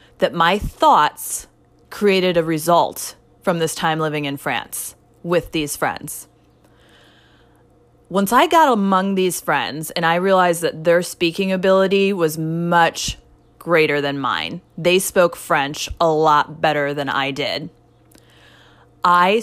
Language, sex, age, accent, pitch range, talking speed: English, female, 30-49, American, 155-195 Hz, 135 wpm